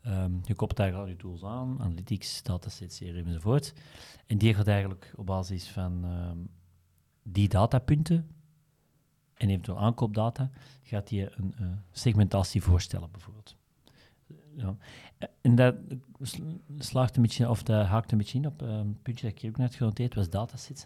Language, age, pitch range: Dutch, 40-59, 95-125 Hz